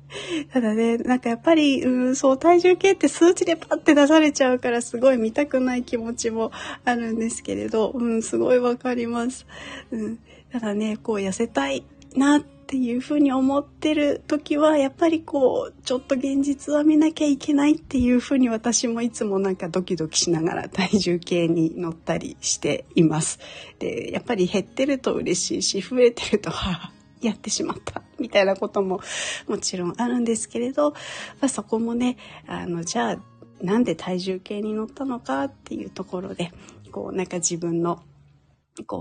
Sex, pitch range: female, 190-270 Hz